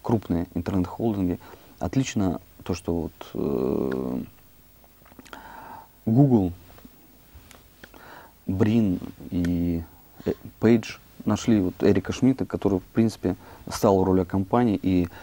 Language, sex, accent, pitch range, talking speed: Russian, male, native, 90-115 Hz, 85 wpm